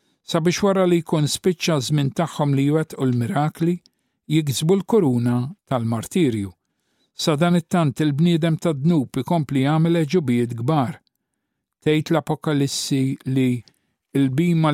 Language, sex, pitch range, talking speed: English, male, 135-170 Hz, 105 wpm